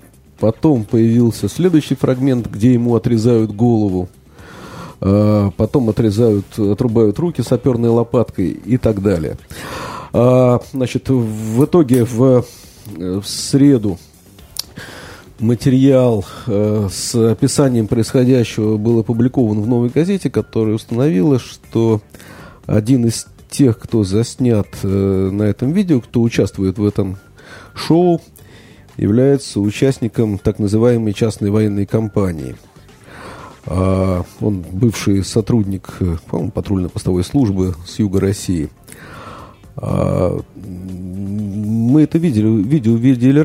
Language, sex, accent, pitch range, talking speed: Russian, male, native, 100-130 Hz, 95 wpm